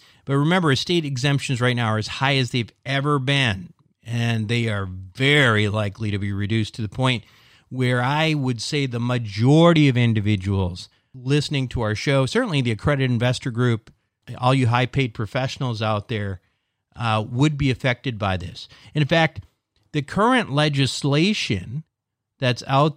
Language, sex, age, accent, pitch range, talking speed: English, male, 40-59, American, 115-145 Hz, 155 wpm